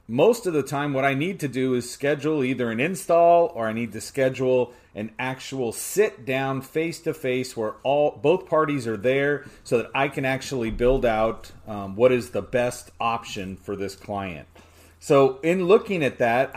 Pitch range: 115-150 Hz